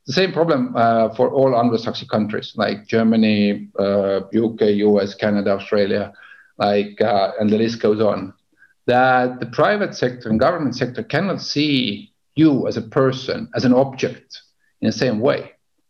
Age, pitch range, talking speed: 50-69, 110-135 Hz, 160 wpm